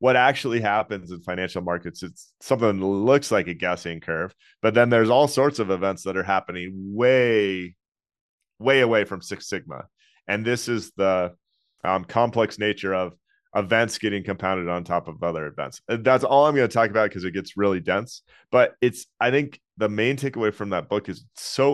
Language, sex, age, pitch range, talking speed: English, male, 30-49, 95-115 Hz, 200 wpm